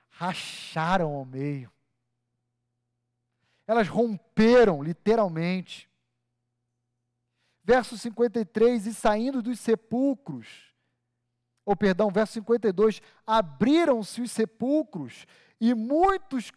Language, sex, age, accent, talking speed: Portuguese, male, 40-59, Brazilian, 75 wpm